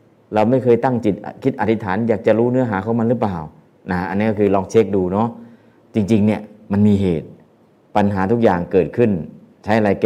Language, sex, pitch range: Thai, male, 90-115 Hz